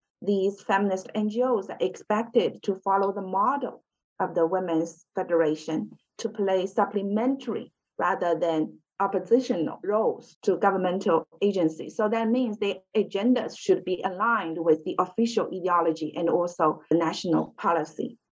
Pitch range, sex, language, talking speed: 175-230 Hz, female, English, 130 wpm